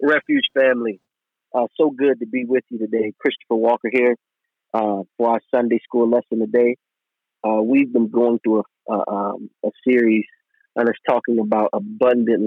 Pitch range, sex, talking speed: 105-125 Hz, male, 170 wpm